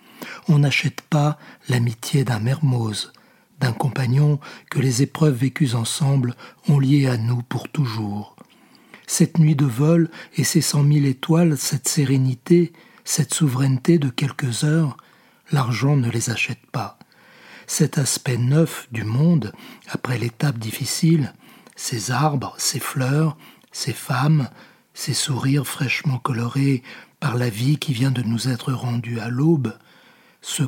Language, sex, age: French, male, 60-79